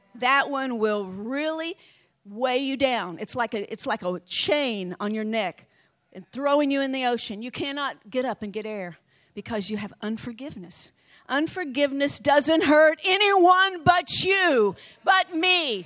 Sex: female